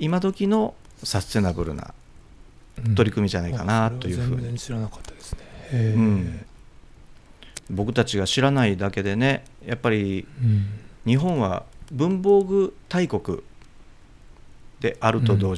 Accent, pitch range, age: native, 95-125 Hz, 40-59